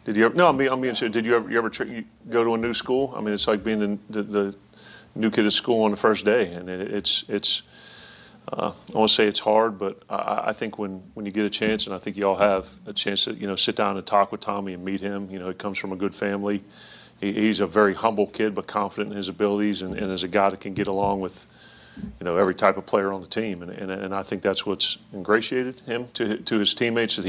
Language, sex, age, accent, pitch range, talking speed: English, male, 40-59, American, 95-105 Hz, 280 wpm